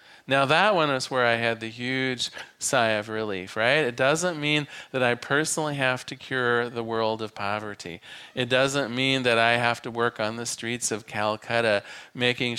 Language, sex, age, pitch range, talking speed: English, male, 40-59, 120-150 Hz, 190 wpm